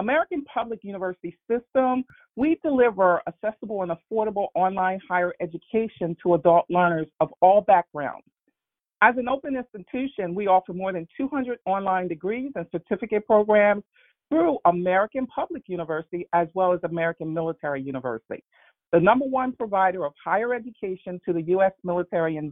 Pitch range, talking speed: 175-235 Hz, 145 wpm